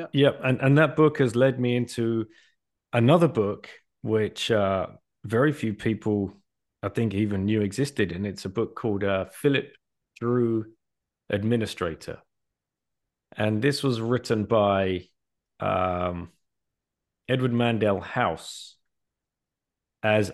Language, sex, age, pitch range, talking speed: English, male, 30-49, 100-120 Hz, 120 wpm